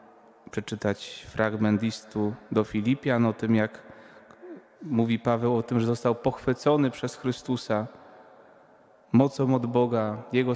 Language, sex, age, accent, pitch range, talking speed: Polish, male, 30-49, native, 115-140 Hz, 120 wpm